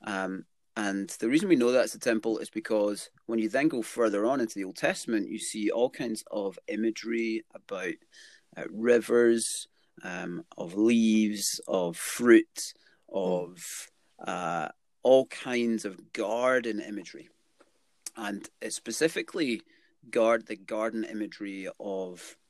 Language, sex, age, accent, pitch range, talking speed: English, male, 30-49, British, 95-115 Hz, 130 wpm